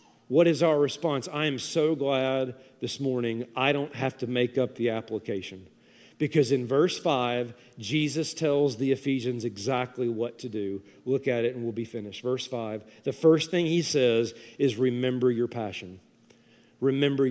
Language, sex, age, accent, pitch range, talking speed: English, male, 40-59, American, 120-155 Hz, 170 wpm